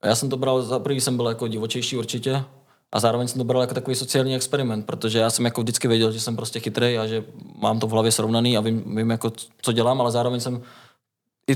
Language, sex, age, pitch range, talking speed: Czech, male, 20-39, 115-130 Hz, 245 wpm